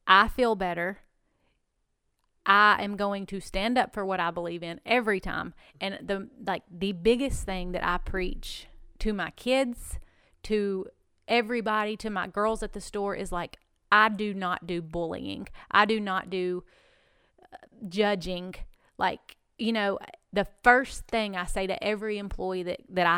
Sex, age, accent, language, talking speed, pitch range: female, 30-49, American, English, 160 wpm, 185-230 Hz